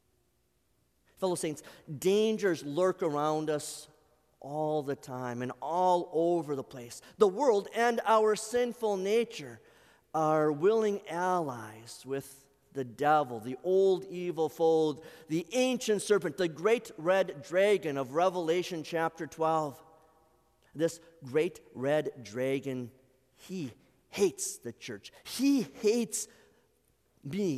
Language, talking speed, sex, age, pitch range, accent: English, 115 wpm, male, 40-59, 145-190 Hz, American